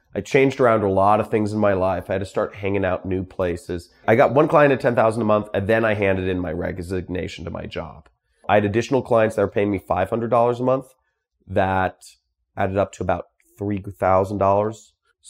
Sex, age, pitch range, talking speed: male, 30-49, 90-110 Hz, 210 wpm